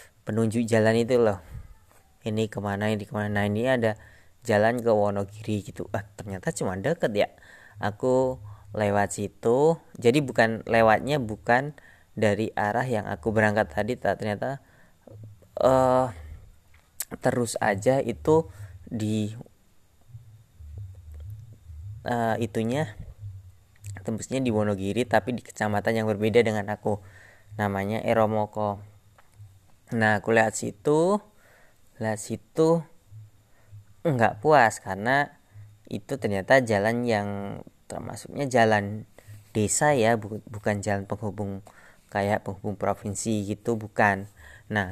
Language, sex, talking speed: Indonesian, female, 105 wpm